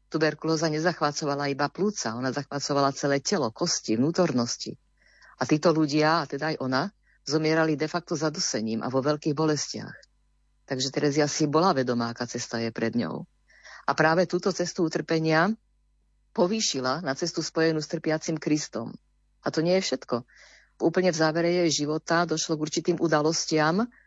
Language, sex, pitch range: Slovak, female, 140-165 Hz